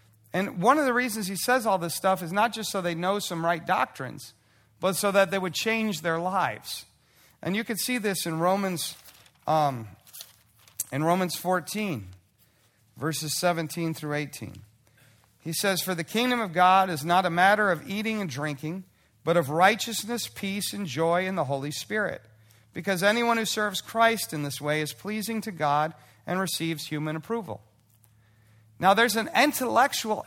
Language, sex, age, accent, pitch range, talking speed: English, male, 40-59, American, 140-205 Hz, 165 wpm